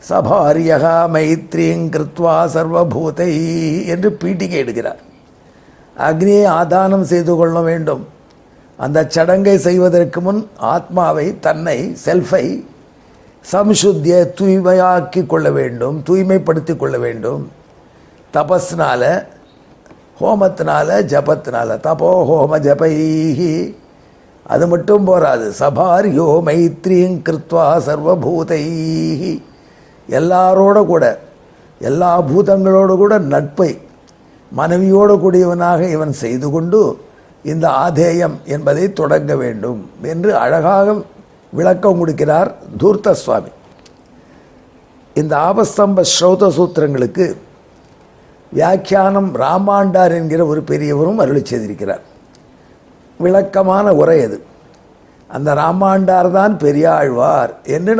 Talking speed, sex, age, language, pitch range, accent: 80 wpm, male, 50-69, Tamil, 160-190 Hz, native